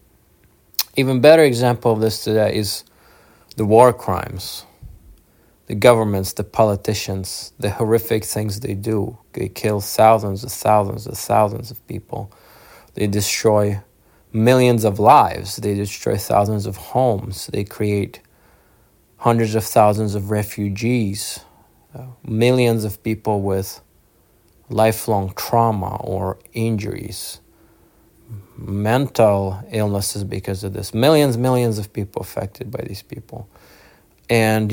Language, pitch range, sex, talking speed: English, 100-120 Hz, male, 115 wpm